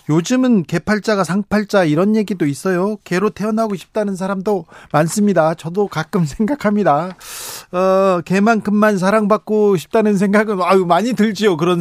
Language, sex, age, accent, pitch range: Korean, male, 40-59, native, 155-205 Hz